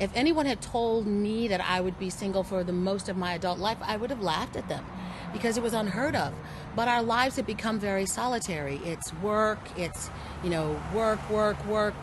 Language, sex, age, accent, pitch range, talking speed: English, female, 40-59, American, 155-230 Hz, 215 wpm